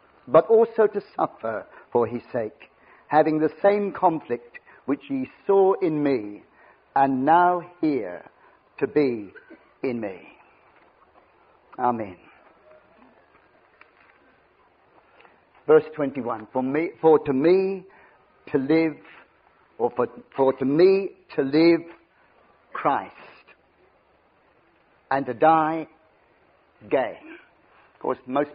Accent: British